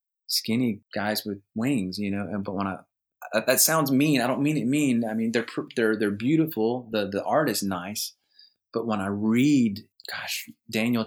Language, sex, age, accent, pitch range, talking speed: English, male, 30-49, American, 95-110 Hz, 195 wpm